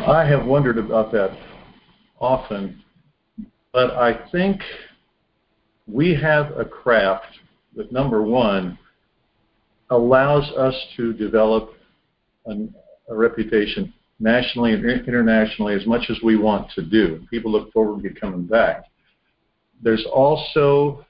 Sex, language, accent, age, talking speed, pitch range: male, English, American, 50-69, 115 wpm, 105-125 Hz